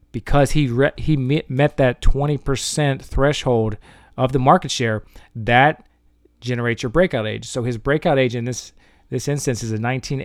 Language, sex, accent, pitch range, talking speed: English, male, American, 115-140 Hz, 165 wpm